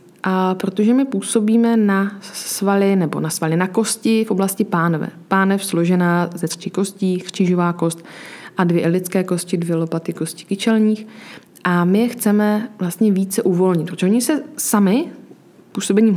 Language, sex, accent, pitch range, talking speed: Czech, female, native, 175-220 Hz, 150 wpm